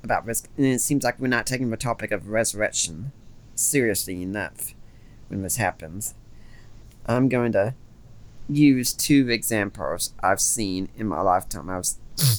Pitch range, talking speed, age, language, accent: 105-130 Hz, 150 wpm, 40-59, English, American